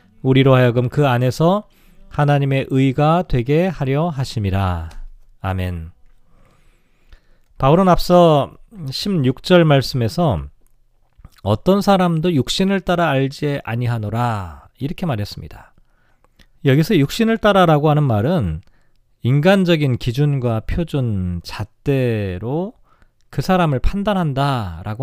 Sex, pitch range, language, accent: male, 120-170 Hz, Korean, native